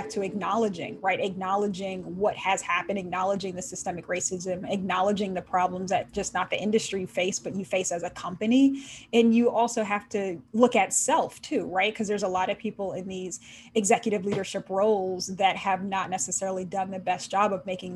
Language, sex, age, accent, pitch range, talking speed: English, female, 20-39, American, 185-210 Hz, 190 wpm